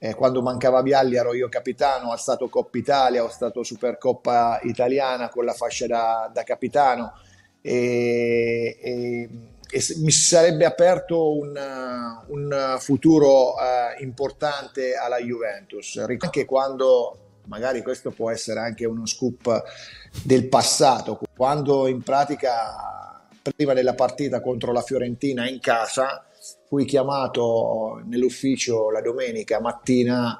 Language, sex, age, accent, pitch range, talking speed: Italian, male, 30-49, native, 115-135 Hz, 120 wpm